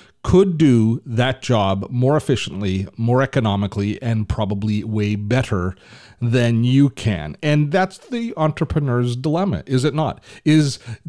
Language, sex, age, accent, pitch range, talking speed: English, male, 40-59, American, 110-145 Hz, 130 wpm